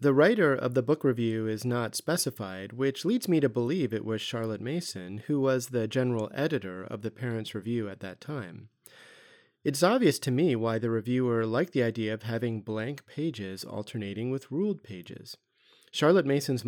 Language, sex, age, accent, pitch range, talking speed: English, male, 30-49, American, 110-160 Hz, 180 wpm